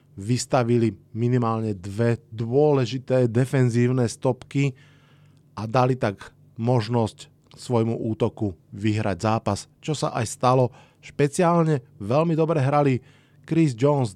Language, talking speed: Slovak, 100 wpm